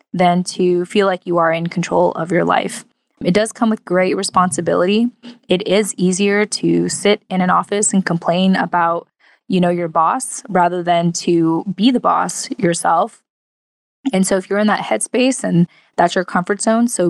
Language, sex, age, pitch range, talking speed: English, female, 20-39, 180-205 Hz, 185 wpm